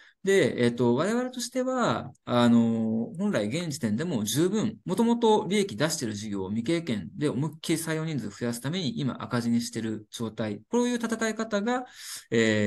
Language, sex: Japanese, male